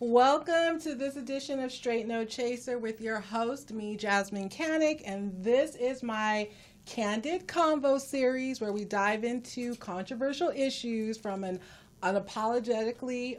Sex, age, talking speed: female, 30-49, 135 wpm